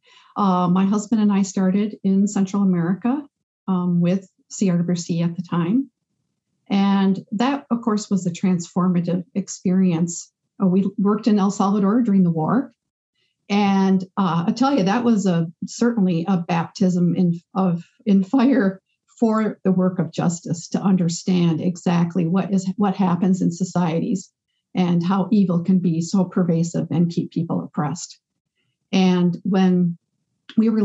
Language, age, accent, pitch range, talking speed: English, 50-69, American, 175-205 Hz, 150 wpm